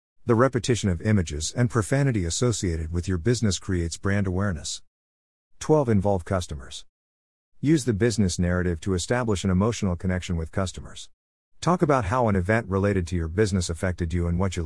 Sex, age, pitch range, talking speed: male, 50-69, 85-115 Hz, 170 wpm